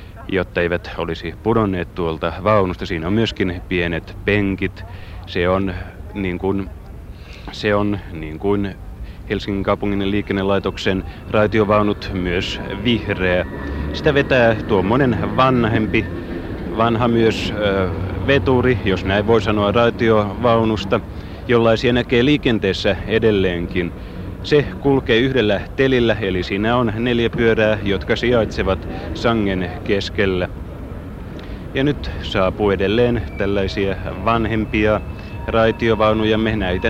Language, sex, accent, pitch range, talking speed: Finnish, male, native, 90-110 Hz, 100 wpm